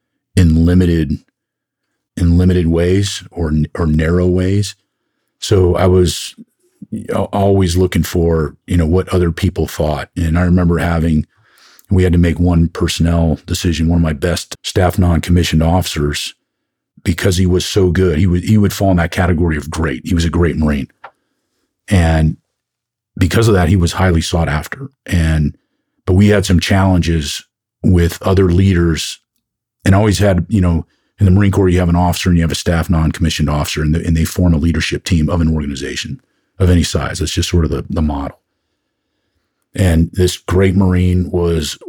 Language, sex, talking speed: English, male, 180 wpm